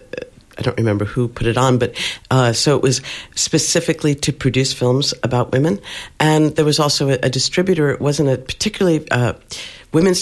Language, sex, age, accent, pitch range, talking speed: English, female, 60-79, American, 125-155 Hz, 180 wpm